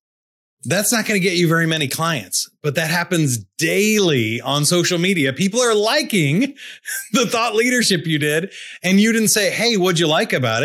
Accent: American